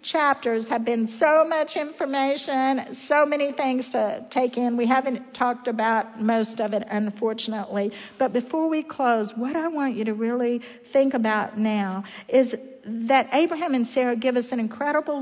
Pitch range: 205-260 Hz